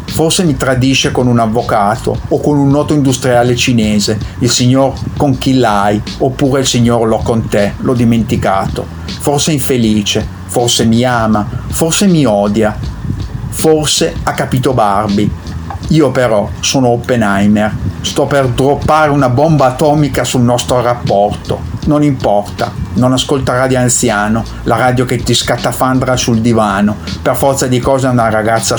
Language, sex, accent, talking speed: Italian, male, native, 145 wpm